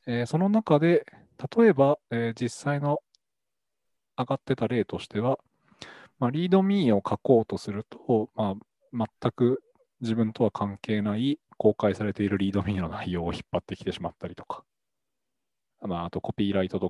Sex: male